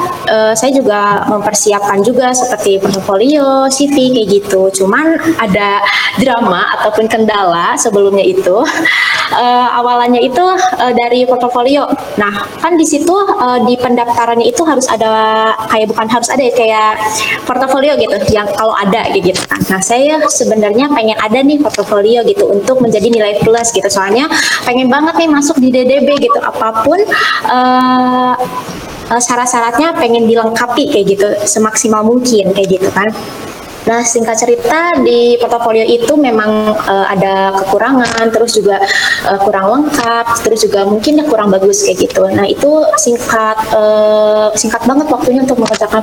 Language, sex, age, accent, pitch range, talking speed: Indonesian, female, 20-39, native, 205-255 Hz, 145 wpm